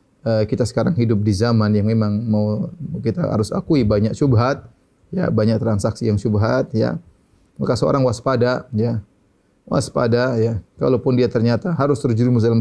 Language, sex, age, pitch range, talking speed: Indonesian, male, 30-49, 105-120 Hz, 150 wpm